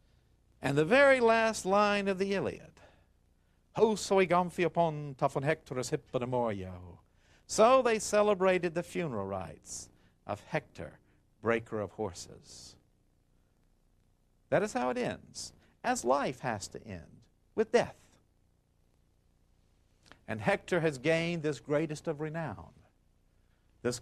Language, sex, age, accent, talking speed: Italian, male, 60-79, American, 100 wpm